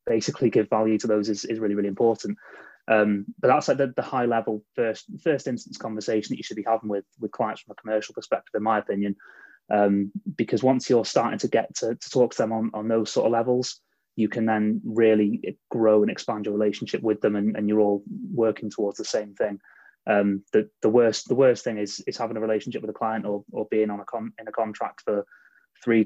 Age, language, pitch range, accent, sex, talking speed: 20-39, English, 105-135 Hz, British, male, 230 wpm